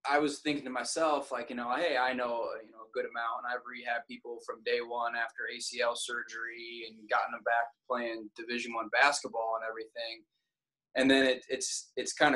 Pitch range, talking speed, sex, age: 115-135 Hz, 205 wpm, male, 20-39